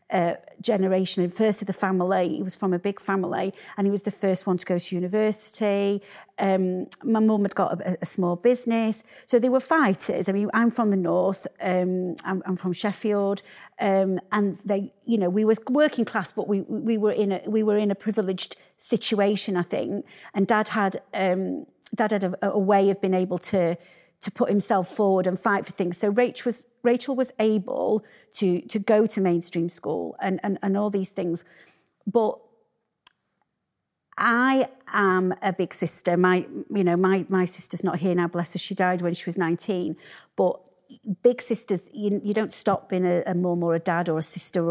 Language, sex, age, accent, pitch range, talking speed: English, female, 40-59, British, 180-215 Hz, 200 wpm